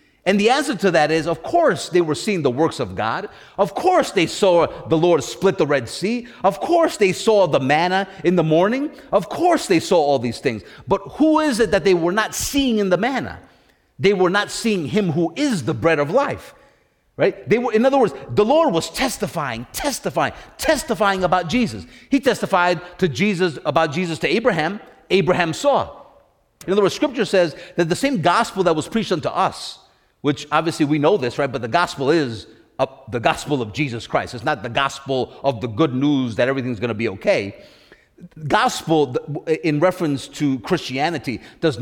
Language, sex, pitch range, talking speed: English, male, 145-205 Hz, 195 wpm